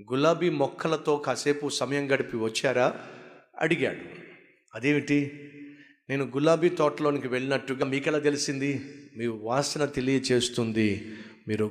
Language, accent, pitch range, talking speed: Telugu, native, 135-180 Hz, 95 wpm